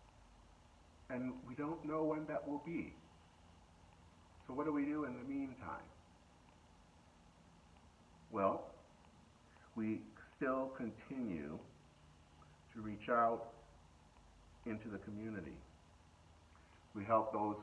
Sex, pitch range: male, 80-110 Hz